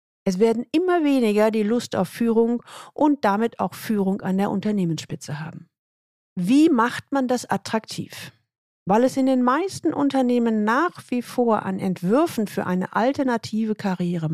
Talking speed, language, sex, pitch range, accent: 150 wpm, German, female, 190-265 Hz, German